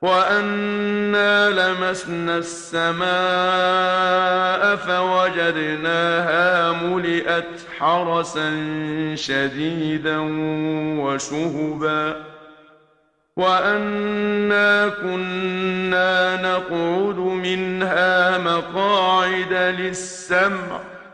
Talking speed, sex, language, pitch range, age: 40 wpm, male, English, 170-185 Hz, 50-69